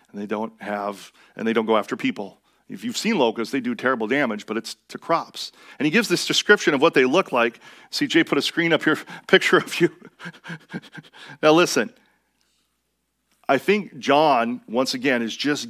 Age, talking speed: 40-59, 185 wpm